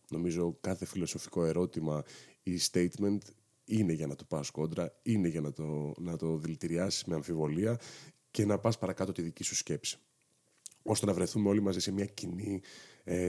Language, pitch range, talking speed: Greek, 85-130 Hz, 165 wpm